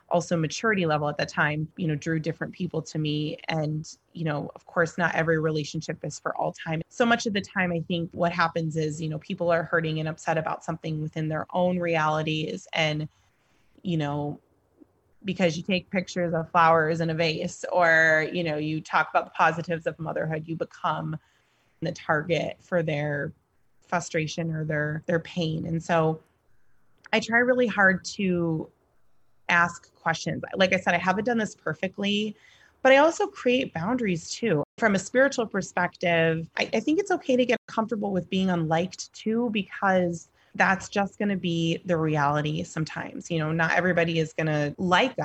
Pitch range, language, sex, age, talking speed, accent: 160-185 Hz, English, female, 20-39, 180 wpm, American